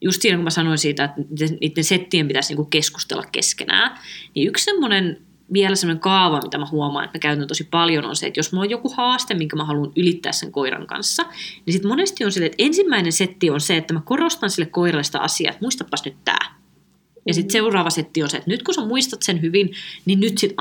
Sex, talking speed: female, 225 wpm